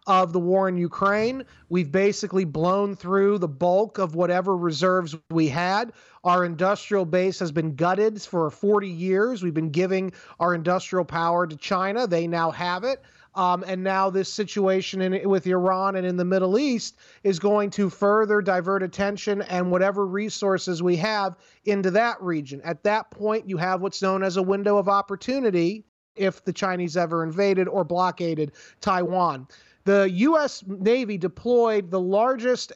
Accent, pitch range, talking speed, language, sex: American, 185-225 Hz, 165 wpm, English, male